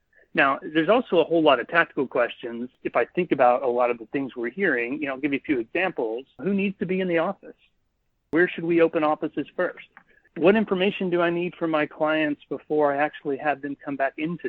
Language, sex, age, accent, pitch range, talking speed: English, male, 40-59, American, 135-170 Hz, 230 wpm